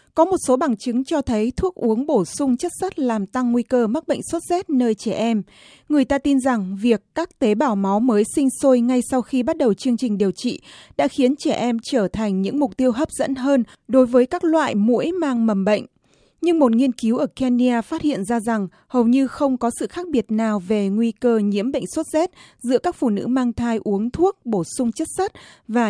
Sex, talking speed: female, 240 wpm